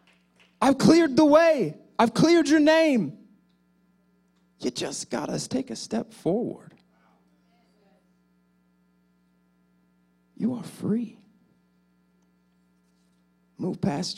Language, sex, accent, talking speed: English, male, American, 90 wpm